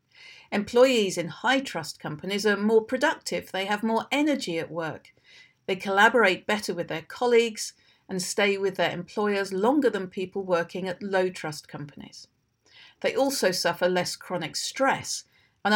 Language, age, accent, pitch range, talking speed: English, 50-69, British, 175-230 Hz, 150 wpm